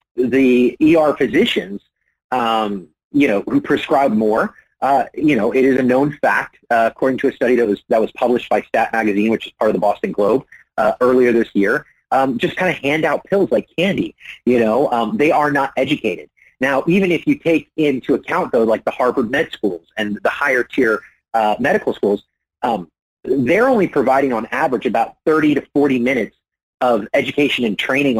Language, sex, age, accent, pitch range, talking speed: English, male, 30-49, American, 110-145 Hz, 195 wpm